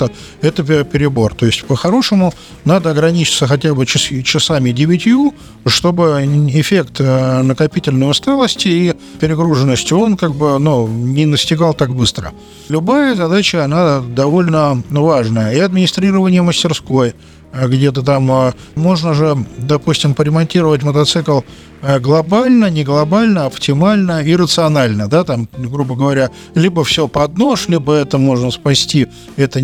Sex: male